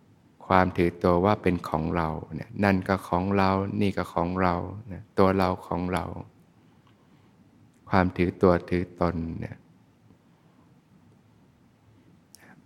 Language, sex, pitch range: Thai, male, 85-100 Hz